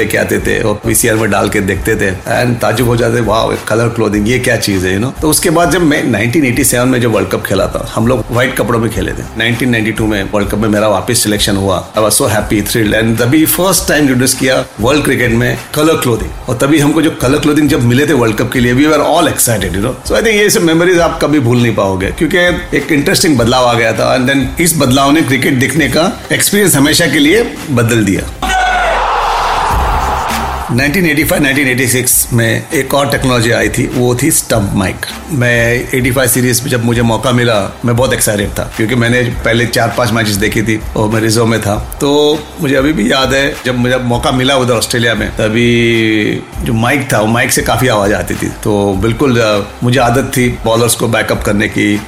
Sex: male